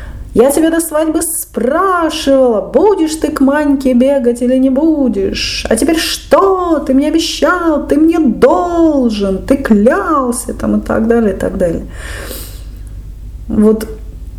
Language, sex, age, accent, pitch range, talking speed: Russian, female, 30-49, native, 180-255 Hz, 135 wpm